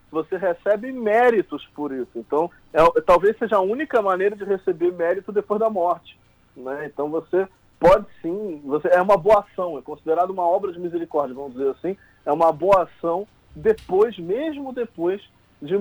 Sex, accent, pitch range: male, Brazilian, 145-185 Hz